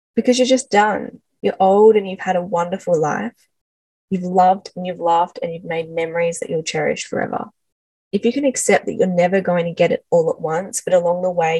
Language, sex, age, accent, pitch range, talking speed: English, female, 10-29, Australian, 175-245 Hz, 220 wpm